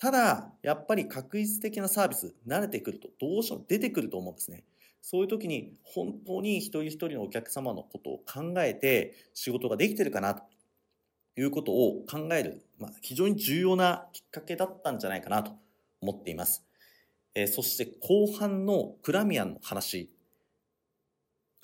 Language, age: Japanese, 40-59